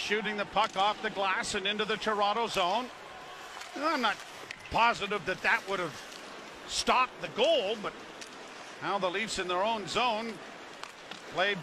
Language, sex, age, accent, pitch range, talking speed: English, male, 50-69, American, 205-245 Hz, 155 wpm